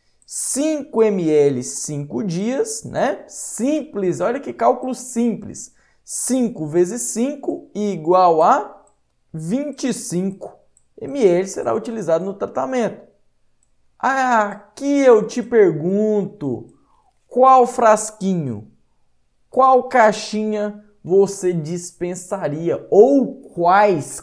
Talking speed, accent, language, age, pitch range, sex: 85 wpm, Brazilian, Portuguese, 20-39, 155-210 Hz, male